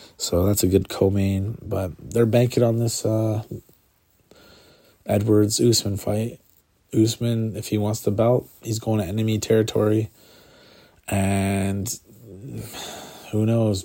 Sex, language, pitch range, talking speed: male, English, 100-115 Hz, 115 wpm